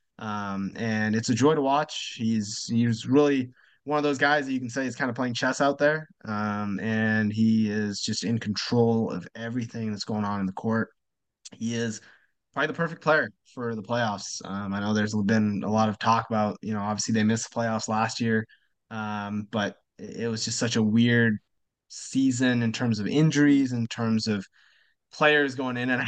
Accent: American